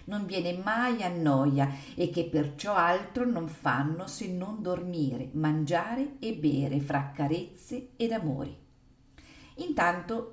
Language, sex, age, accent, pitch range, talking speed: Italian, female, 50-69, native, 150-215 Hz, 120 wpm